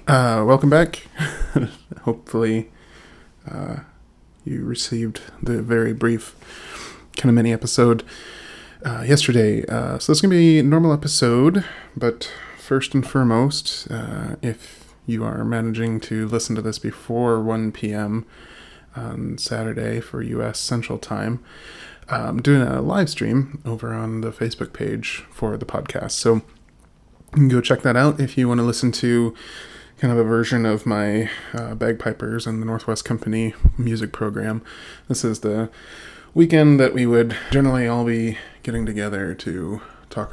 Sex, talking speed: male, 145 wpm